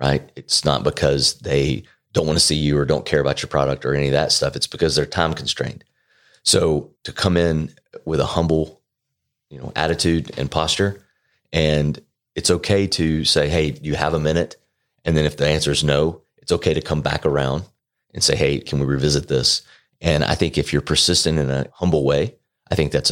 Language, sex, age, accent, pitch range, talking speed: English, male, 30-49, American, 75-90 Hz, 210 wpm